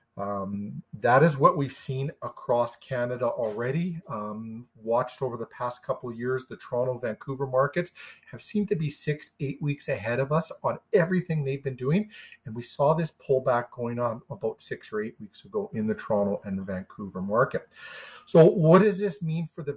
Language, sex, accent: English, male, American